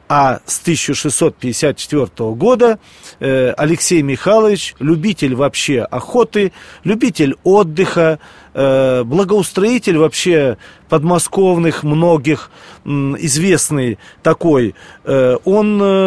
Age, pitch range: 40-59, 145-190 Hz